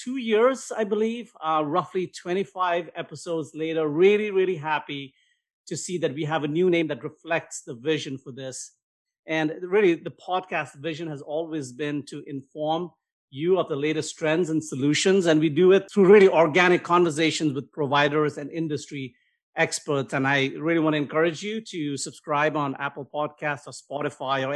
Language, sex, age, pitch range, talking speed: English, male, 50-69, 145-170 Hz, 175 wpm